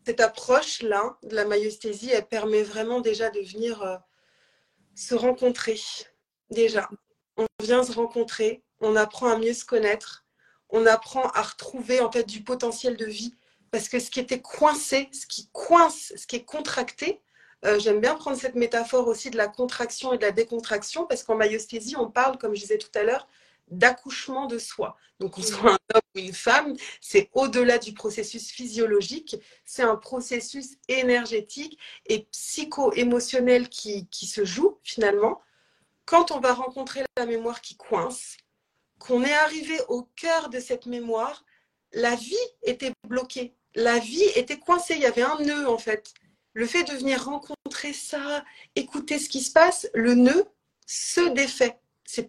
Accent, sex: French, female